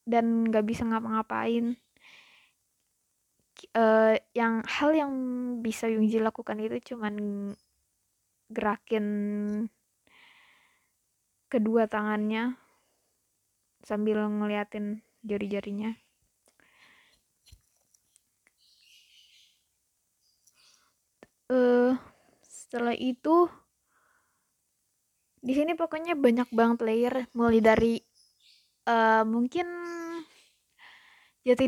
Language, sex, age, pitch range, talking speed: Indonesian, female, 20-39, 220-260 Hz, 65 wpm